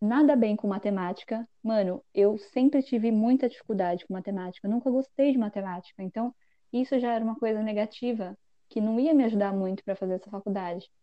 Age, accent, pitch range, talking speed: 10-29, Brazilian, 195-260 Hz, 185 wpm